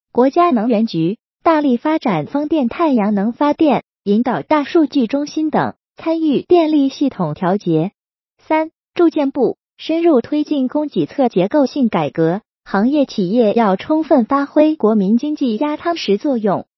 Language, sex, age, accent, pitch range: Chinese, female, 20-39, native, 205-300 Hz